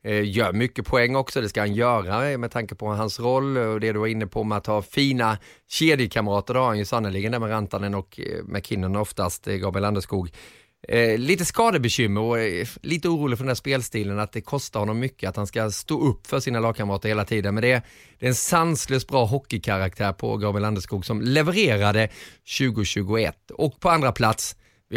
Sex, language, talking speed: male, English, 190 wpm